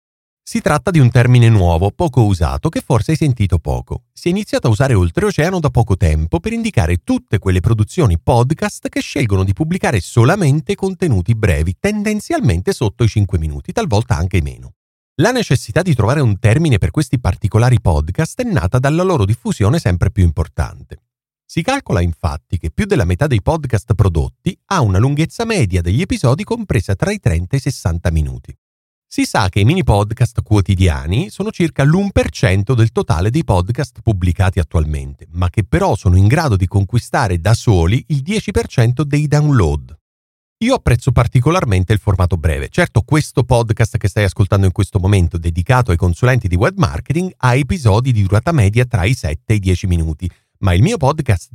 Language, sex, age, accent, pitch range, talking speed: Italian, male, 40-59, native, 95-140 Hz, 175 wpm